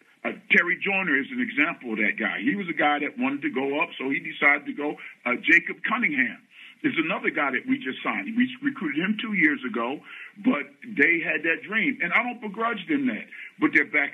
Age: 50-69